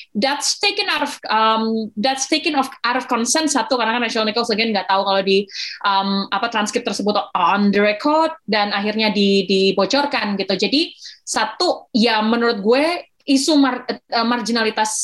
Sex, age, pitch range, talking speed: female, 20-39, 210-260 Hz, 165 wpm